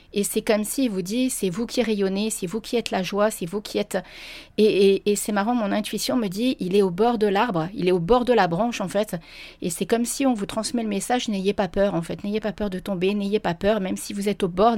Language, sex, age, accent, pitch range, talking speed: French, female, 40-59, French, 185-225 Hz, 290 wpm